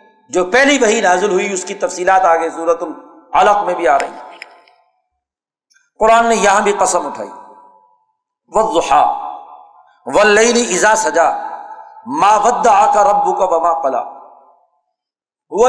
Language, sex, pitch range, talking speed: Urdu, male, 180-250 Hz, 120 wpm